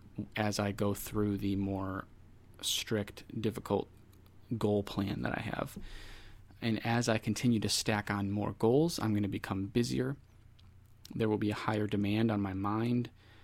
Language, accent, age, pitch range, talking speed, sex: English, American, 20-39, 100-115 Hz, 160 wpm, male